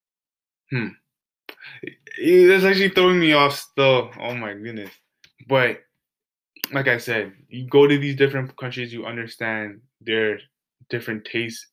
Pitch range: 110-130 Hz